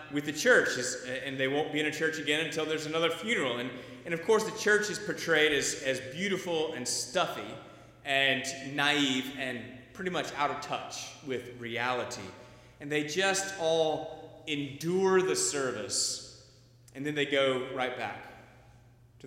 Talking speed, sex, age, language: 160 wpm, male, 30-49, English